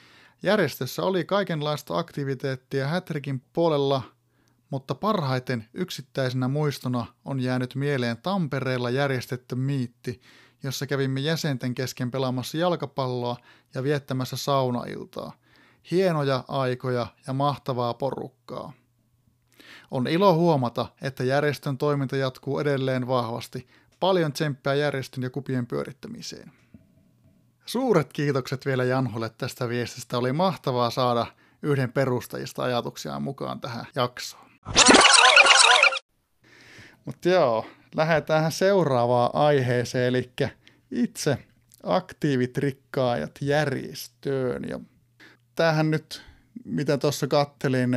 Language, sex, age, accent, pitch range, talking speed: Finnish, male, 30-49, native, 125-145 Hz, 95 wpm